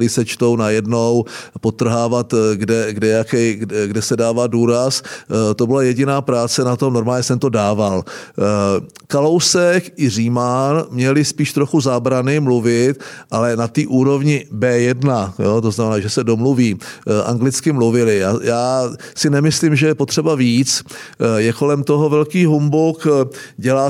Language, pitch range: Czech, 120-150 Hz